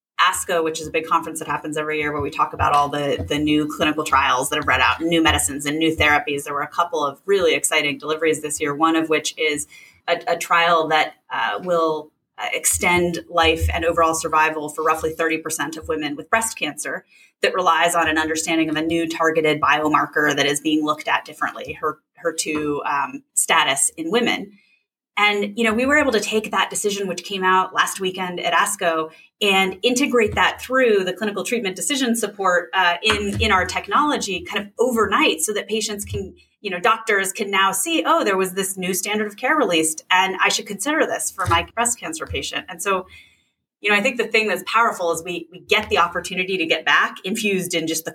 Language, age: English, 30-49